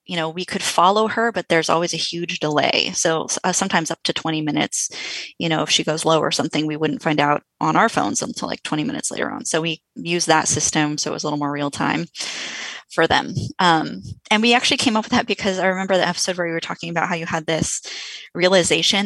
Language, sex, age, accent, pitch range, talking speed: English, female, 20-39, American, 155-190 Hz, 250 wpm